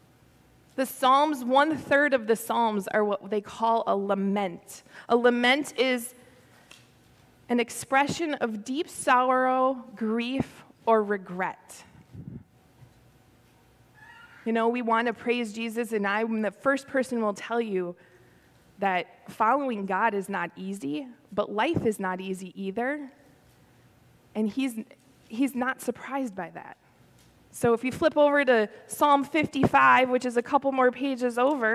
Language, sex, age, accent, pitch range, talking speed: English, female, 20-39, American, 220-275 Hz, 135 wpm